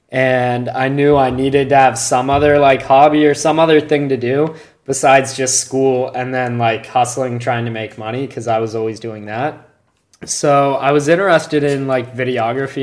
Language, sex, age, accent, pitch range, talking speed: English, male, 20-39, American, 120-140 Hz, 190 wpm